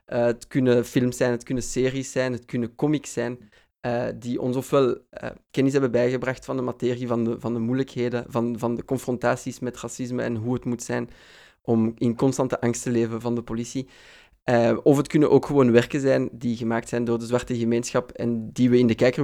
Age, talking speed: 20-39, 215 wpm